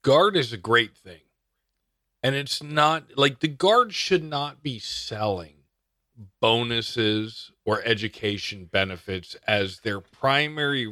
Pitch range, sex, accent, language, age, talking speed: 95-140 Hz, male, American, English, 40-59, 120 wpm